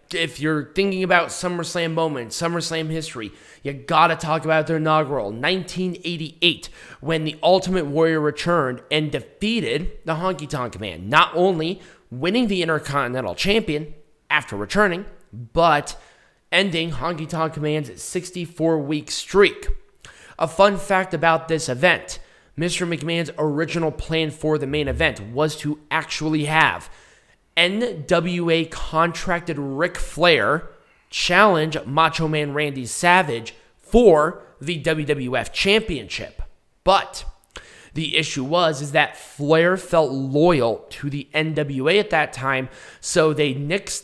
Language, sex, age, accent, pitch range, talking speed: English, male, 20-39, American, 145-175 Hz, 125 wpm